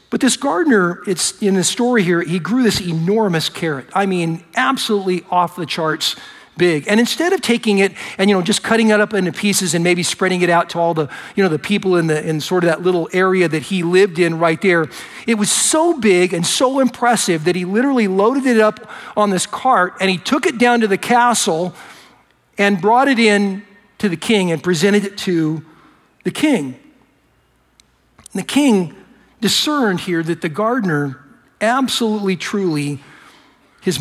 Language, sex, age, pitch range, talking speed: English, male, 50-69, 160-210 Hz, 190 wpm